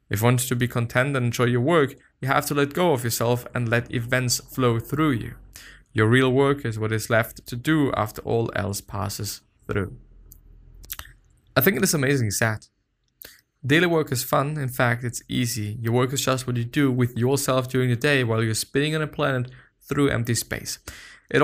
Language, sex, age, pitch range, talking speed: English, male, 20-39, 110-140 Hz, 205 wpm